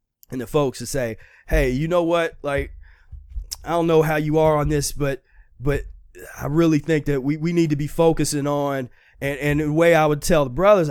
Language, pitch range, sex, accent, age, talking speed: English, 130-160 Hz, male, American, 20-39, 220 wpm